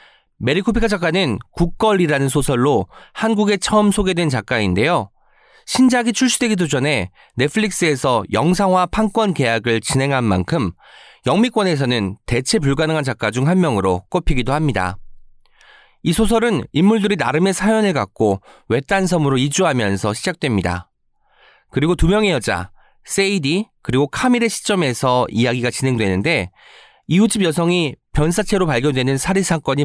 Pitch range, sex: 120-195 Hz, male